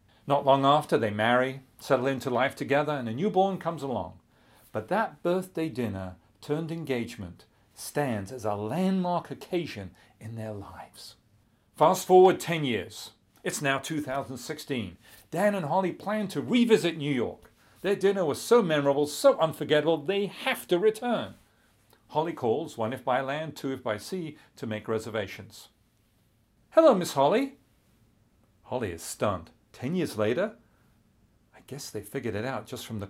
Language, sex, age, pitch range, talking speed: English, male, 40-59, 110-175 Hz, 155 wpm